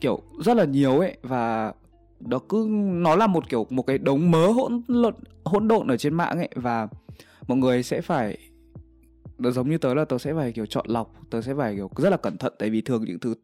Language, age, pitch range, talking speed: Vietnamese, 20-39, 115-150 Hz, 230 wpm